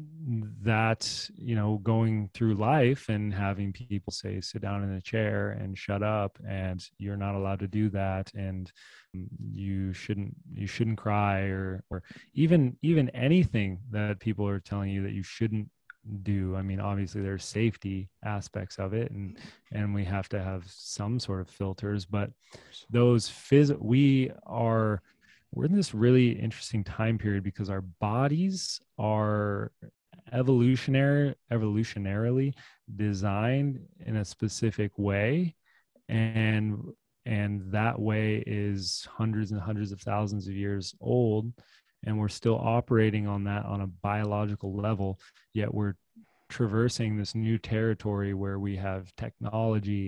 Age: 20-39